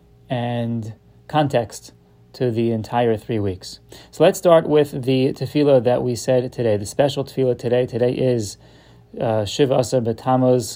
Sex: male